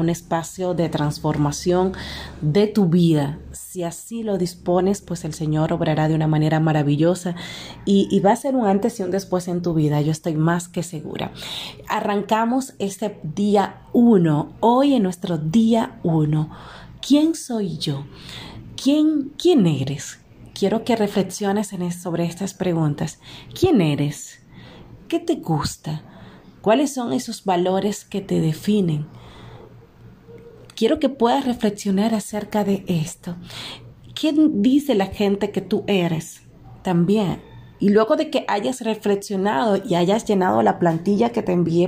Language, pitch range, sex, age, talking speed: Spanish, 165-220 Hz, female, 30-49, 145 wpm